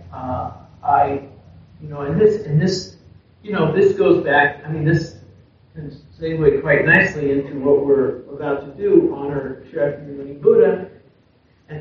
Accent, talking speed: American, 160 wpm